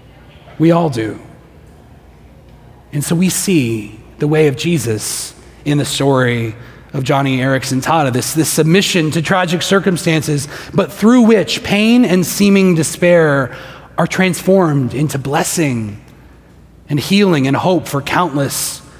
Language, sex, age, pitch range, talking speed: English, male, 30-49, 135-175 Hz, 130 wpm